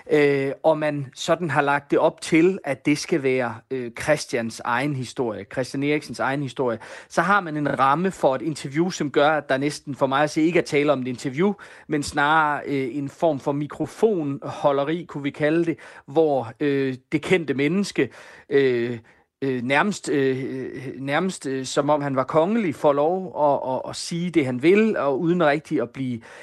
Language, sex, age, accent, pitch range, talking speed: Danish, male, 30-49, native, 130-160 Hz, 200 wpm